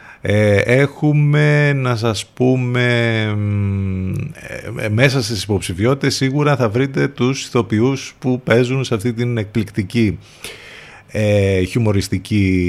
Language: Greek